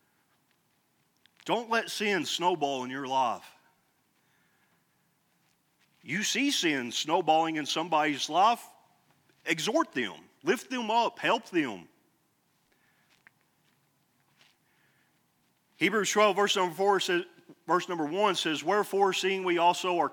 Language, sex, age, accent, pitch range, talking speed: English, male, 40-59, American, 125-185 Hz, 105 wpm